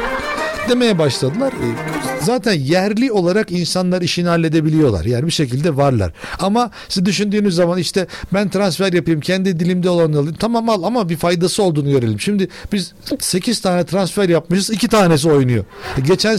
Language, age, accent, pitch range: Turkish, 60-79, native, 155-195 Hz